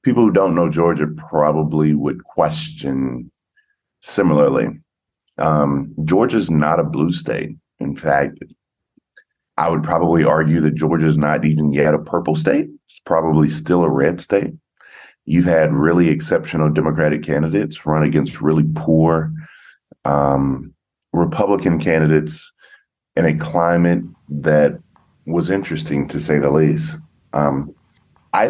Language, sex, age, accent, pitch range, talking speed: English, male, 40-59, American, 75-80 Hz, 125 wpm